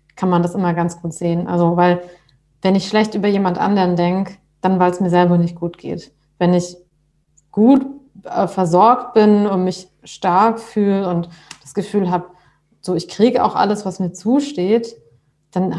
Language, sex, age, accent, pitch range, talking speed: German, female, 30-49, German, 175-210 Hz, 180 wpm